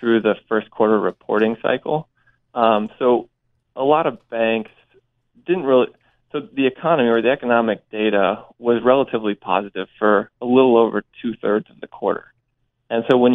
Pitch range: 110-125 Hz